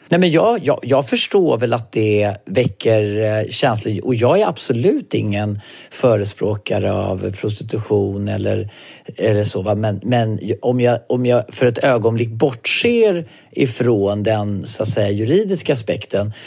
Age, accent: 40-59, native